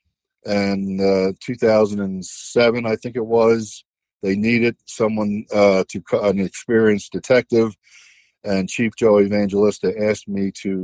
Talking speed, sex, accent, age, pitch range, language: 120 wpm, male, American, 50-69, 95-110 Hz, English